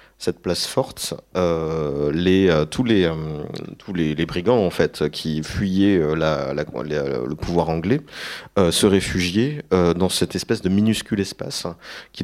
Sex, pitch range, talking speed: male, 85-100 Hz, 180 wpm